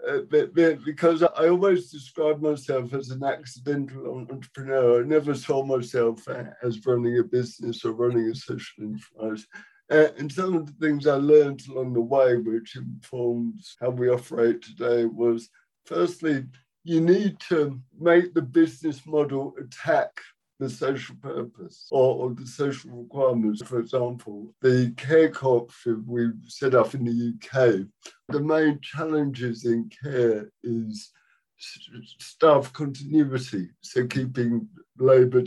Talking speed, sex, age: 130 wpm, male, 60-79